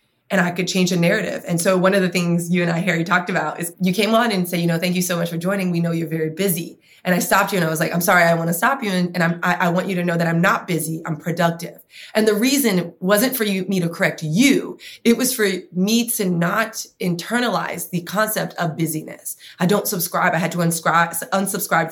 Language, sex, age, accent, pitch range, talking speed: English, female, 20-39, American, 170-200 Hz, 255 wpm